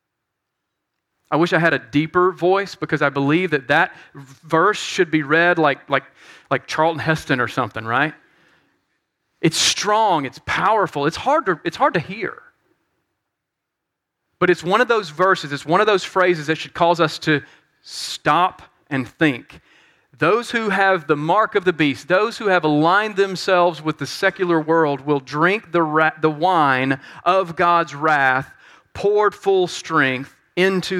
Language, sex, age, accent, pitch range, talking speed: English, male, 40-59, American, 145-180 Hz, 155 wpm